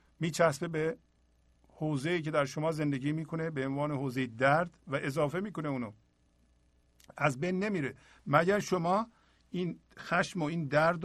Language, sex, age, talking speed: Persian, male, 50-69, 140 wpm